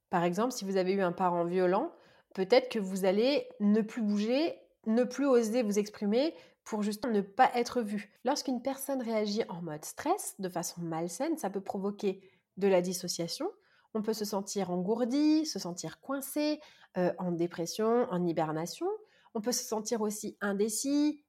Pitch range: 190-250 Hz